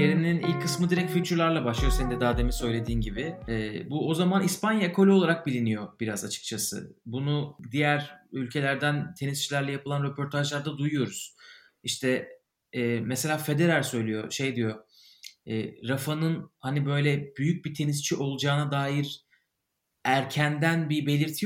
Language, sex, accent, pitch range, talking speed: Turkish, male, native, 135-185 Hz, 135 wpm